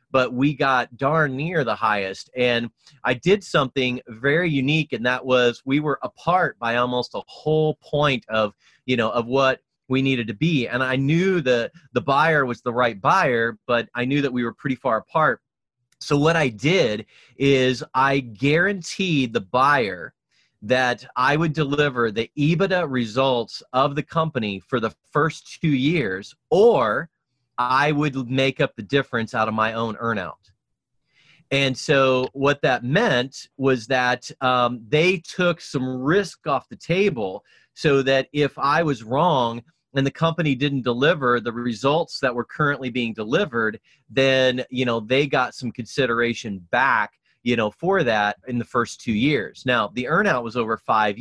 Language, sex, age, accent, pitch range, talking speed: English, male, 30-49, American, 120-150 Hz, 170 wpm